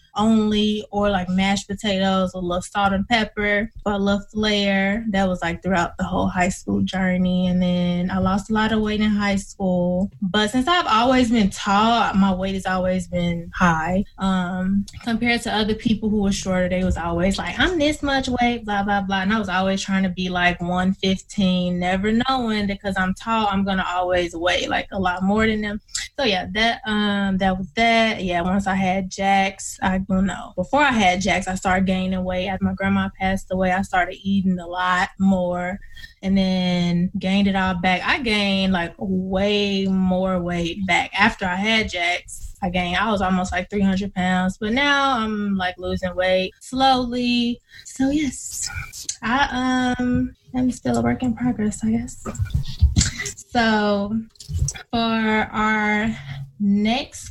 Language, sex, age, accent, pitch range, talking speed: English, female, 20-39, American, 185-220 Hz, 180 wpm